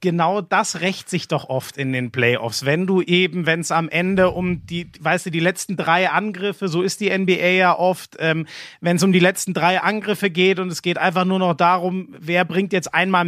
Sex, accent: male, German